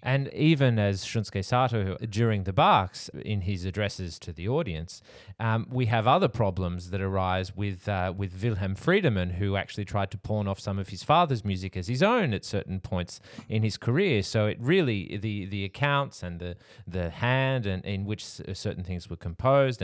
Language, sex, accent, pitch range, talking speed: English, male, Australian, 95-115 Hz, 190 wpm